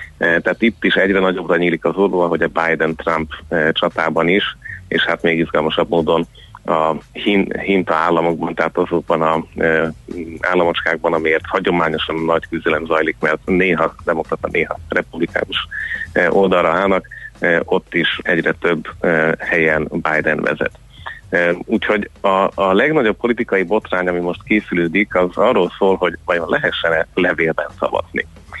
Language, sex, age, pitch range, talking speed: Hungarian, male, 30-49, 85-95 Hz, 130 wpm